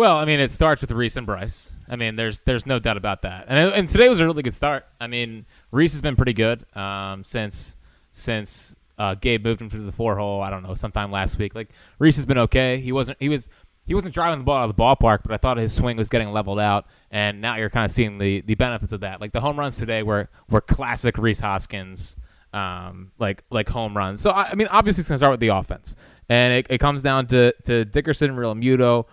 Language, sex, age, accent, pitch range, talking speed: English, male, 20-39, American, 110-145 Hz, 255 wpm